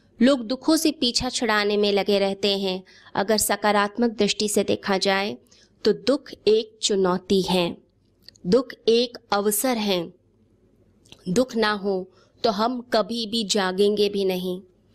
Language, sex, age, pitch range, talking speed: Hindi, female, 20-39, 190-230 Hz, 135 wpm